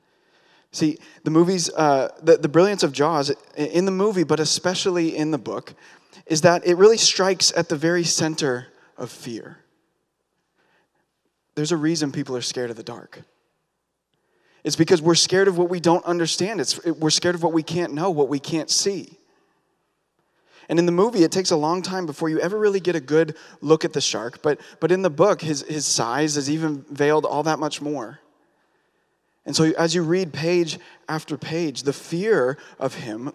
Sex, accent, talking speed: male, American, 190 wpm